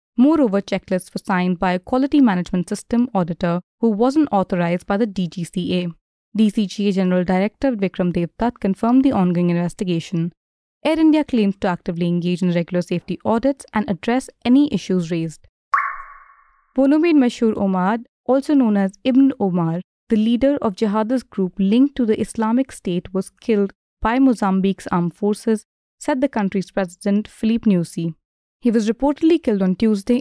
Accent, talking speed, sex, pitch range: Indian, 155 wpm, female, 185-240 Hz